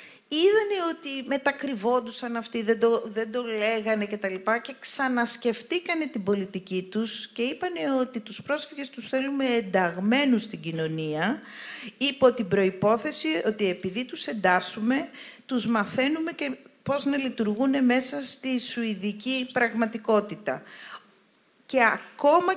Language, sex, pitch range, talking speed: Greek, female, 195-250 Hz, 120 wpm